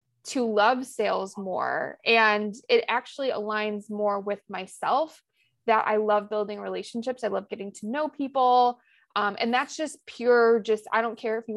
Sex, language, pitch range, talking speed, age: female, English, 210-245 Hz, 170 wpm, 20-39